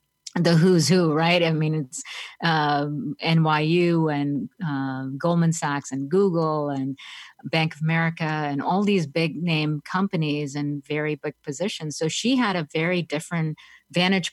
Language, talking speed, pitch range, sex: English, 150 wpm, 145-170 Hz, female